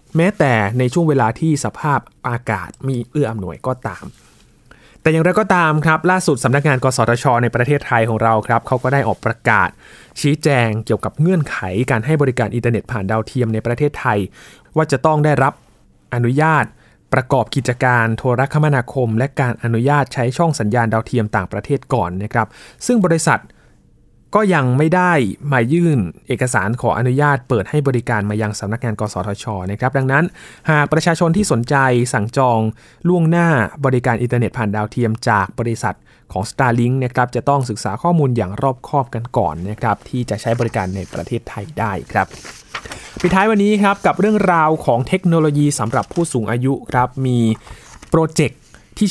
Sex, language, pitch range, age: male, Thai, 115-150 Hz, 20-39